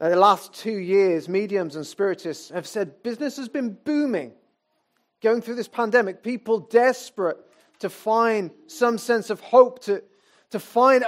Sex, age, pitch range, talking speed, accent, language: male, 40-59, 185-245 Hz, 155 wpm, British, English